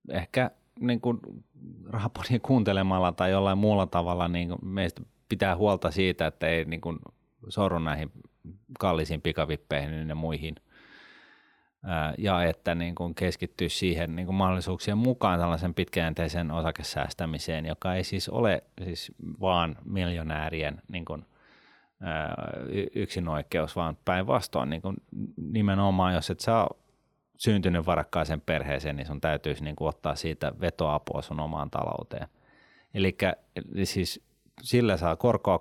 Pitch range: 80-95 Hz